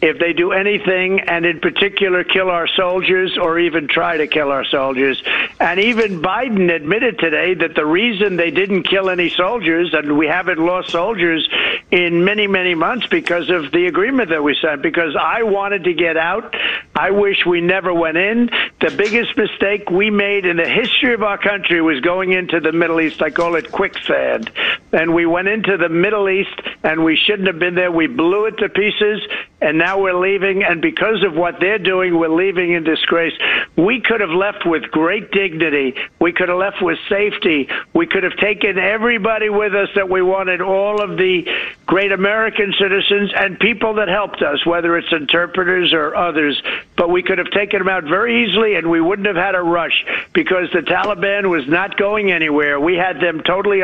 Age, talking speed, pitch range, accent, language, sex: 60-79, 195 wpm, 170-205 Hz, American, English, male